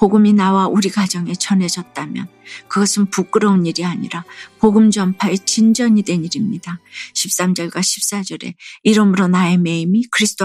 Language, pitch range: Korean, 175-210 Hz